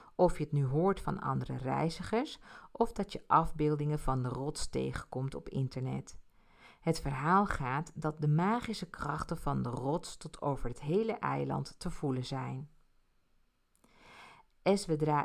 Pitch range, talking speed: 135-180 Hz, 145 wpm